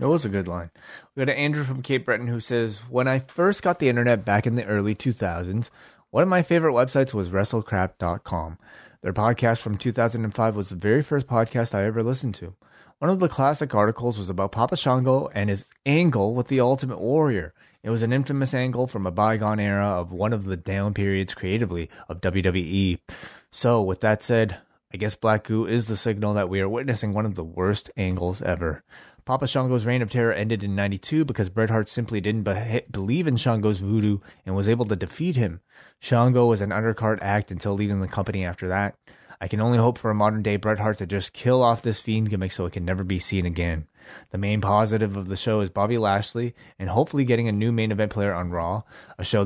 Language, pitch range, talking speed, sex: English, 95-120 Hz, 215 wpm, male